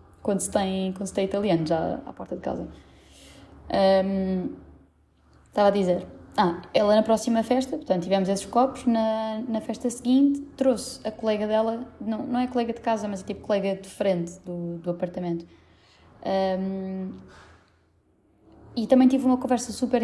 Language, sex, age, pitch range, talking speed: Portuguese, female, 20-39, 165-265 Hz, 165 wpm